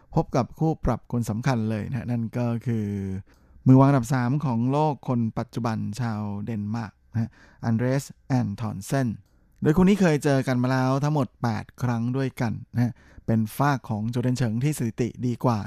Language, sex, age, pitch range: Thai, male, 20-39, 110-130 Hz